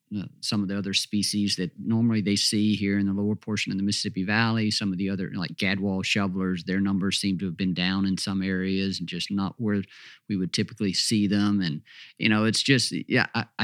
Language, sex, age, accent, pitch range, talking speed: English, male, 40-59, American, 100-125 Hz, 220 wpm